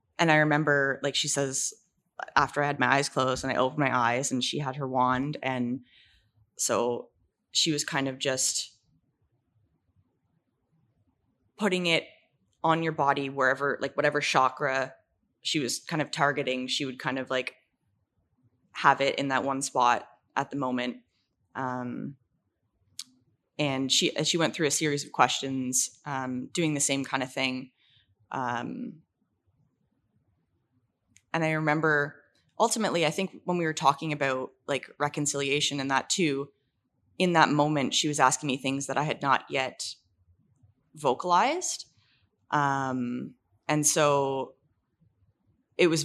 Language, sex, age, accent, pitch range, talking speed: English, female, 20-39, American, 125-150 Hz, 145 wpm